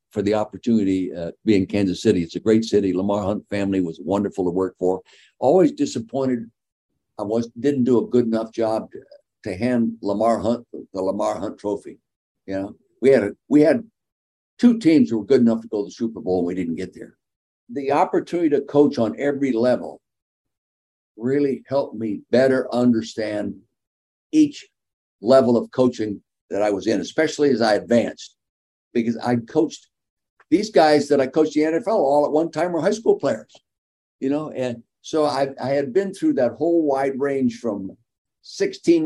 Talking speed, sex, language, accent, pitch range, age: 185 wpm, male, English, American, 110-145 Hz, 60-79